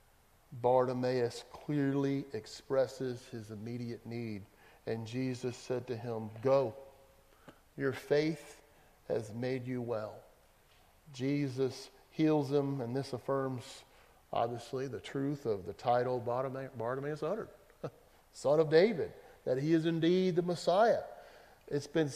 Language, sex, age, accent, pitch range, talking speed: English, male, 40-59, American, 130-155 Hz, 115 wpm